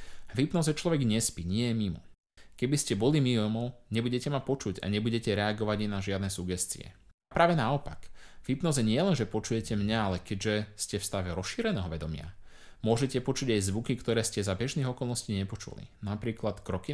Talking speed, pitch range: 175 wpm, 95-120 Hz